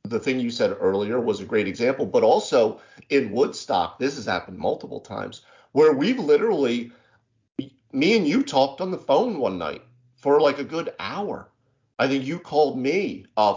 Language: English